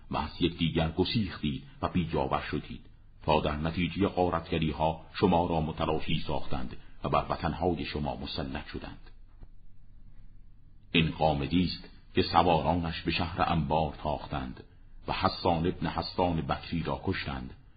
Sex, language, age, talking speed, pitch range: male, Persian, 50-69, 130 wpm, 80-95 Hz